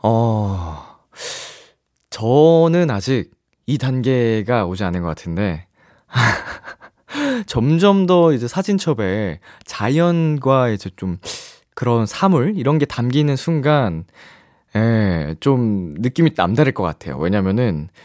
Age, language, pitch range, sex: 20-39, Korean, 100-155 Hz, male